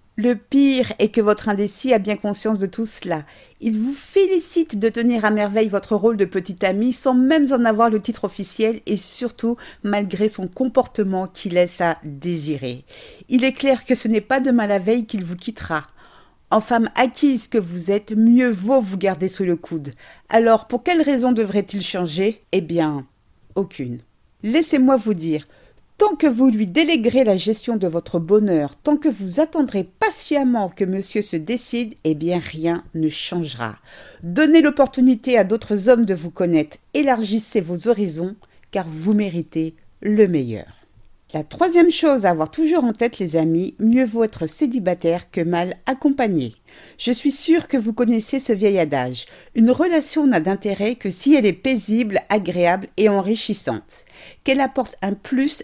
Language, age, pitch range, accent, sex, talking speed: French, 50-69, 180-255 Hz, French, female, 170 wpm